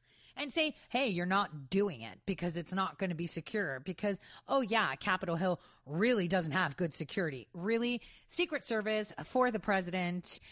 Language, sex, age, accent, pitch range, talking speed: English, female, 40-59, American, 175-260 Hz, 170 wpm